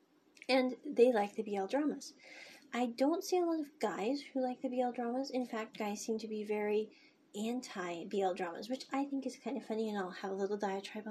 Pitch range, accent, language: 210-275 Hz, American, English